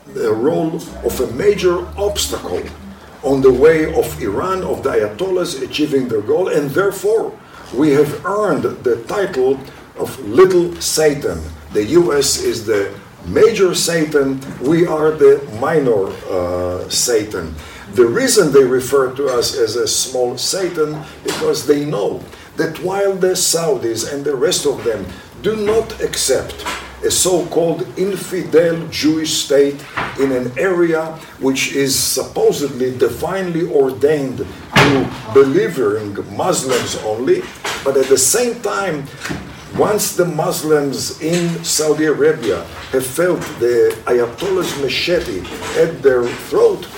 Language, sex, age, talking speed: English, male, 50-69, 130 wpm